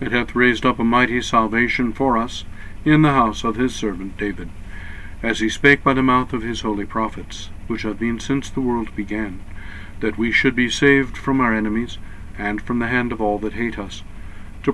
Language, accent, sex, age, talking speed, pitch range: English, American, male, 50-69, 210 wpm, 100-125 Hz